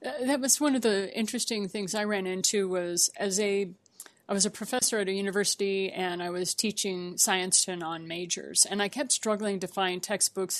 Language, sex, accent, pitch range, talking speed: English, female, American, 185-225 Hz, 195 wpm